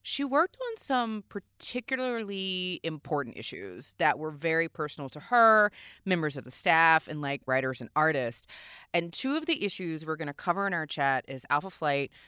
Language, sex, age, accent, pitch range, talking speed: English, female, 30-49, American, 135-175 Hz, 180 wpm